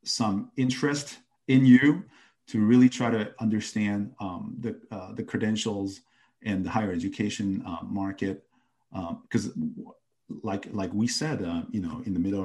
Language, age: English, 40-59